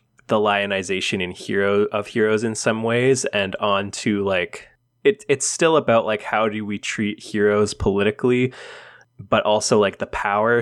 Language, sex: English, male